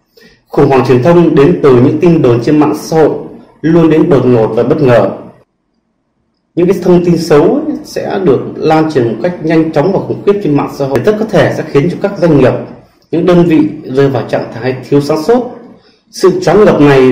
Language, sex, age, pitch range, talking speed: Vietnamese, male, 30-49, 135-180 Hz, 220 wpm